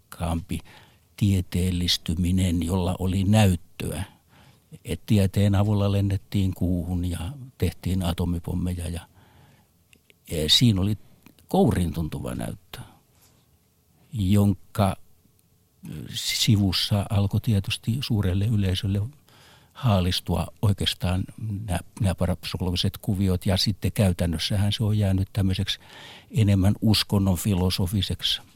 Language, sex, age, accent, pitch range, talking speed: Finnish, male, 60-79, native, 90-110 Hz, 85 wpm